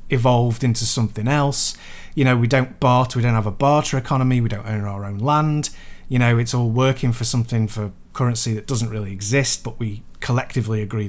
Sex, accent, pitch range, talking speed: male, British, 110-145 Hz, 205 wpm